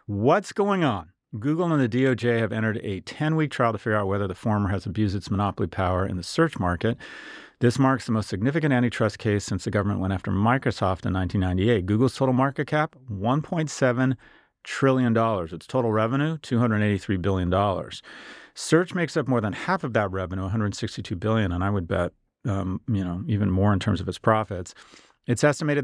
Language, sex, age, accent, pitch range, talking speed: English, male, 40-59, American, 100-130 Hz, 185 wpm